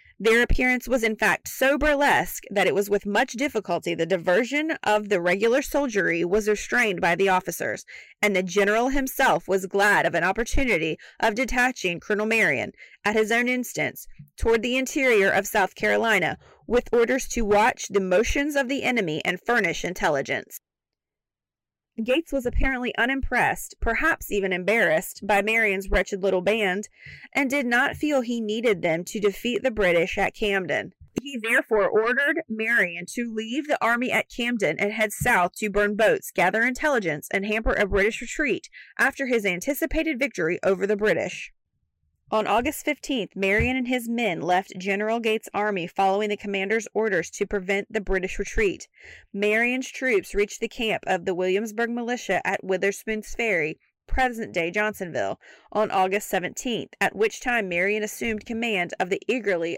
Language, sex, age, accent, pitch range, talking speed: English, female, 30-49, American, 195-245 Hz, 160 wpm